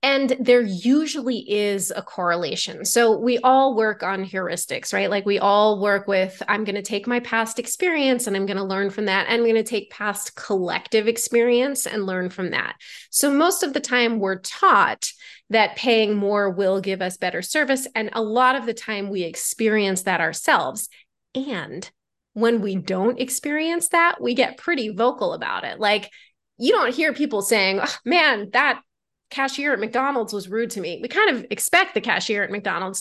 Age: 30-49